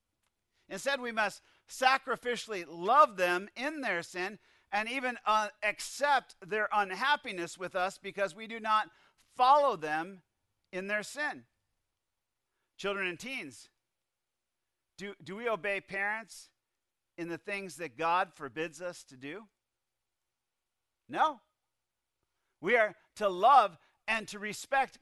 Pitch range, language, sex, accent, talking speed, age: 175-220 Hz, English, male, American, 120 wpm, 50-69